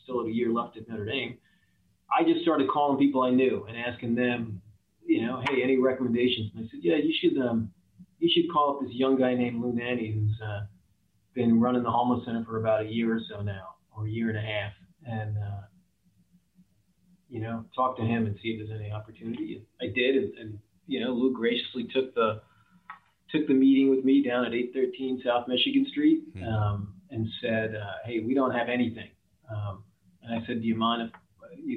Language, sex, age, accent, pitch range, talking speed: English, male, 40-59, American, 110-130 Hz, 210 wpm